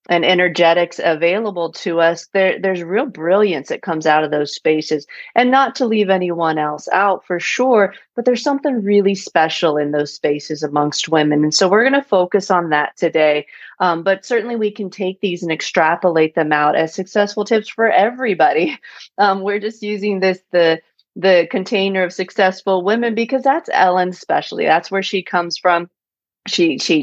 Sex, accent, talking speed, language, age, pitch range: female, American, 180 wpm, English, 30-49, 165-205 Hz